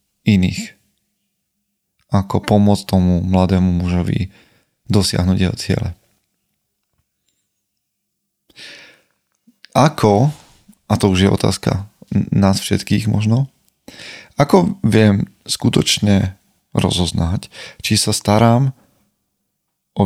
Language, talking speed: Slovak, 80 wpm